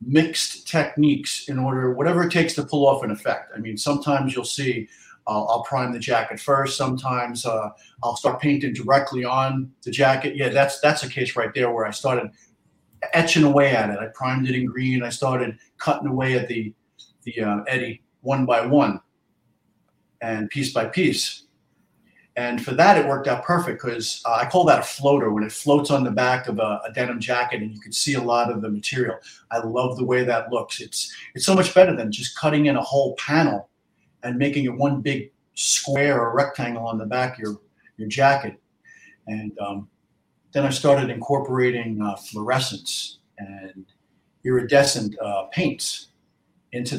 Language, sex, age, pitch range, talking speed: English, male, 40-59, 115-140 Hz, 190 wpm